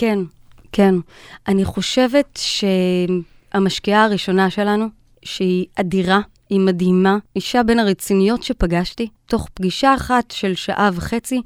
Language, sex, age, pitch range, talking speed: Hebrew, female, 20-39, 185-240 Hz, 110 wpm